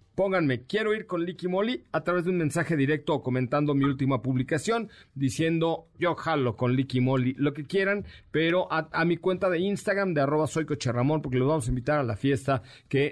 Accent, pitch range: Mexican, 135-180 Hz